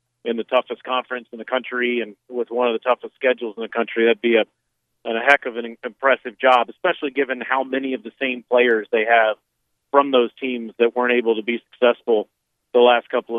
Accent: American